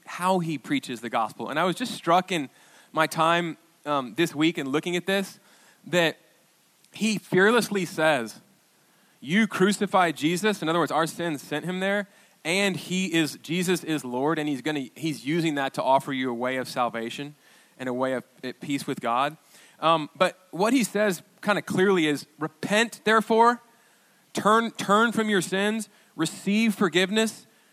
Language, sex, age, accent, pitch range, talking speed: English, male, 20-39, American, 145-200 Hz, 170 wpm